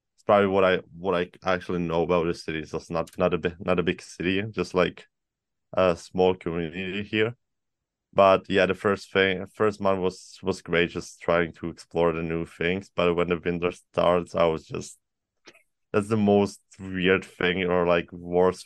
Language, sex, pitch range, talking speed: English, male, 85-95 Hz, 195 wpm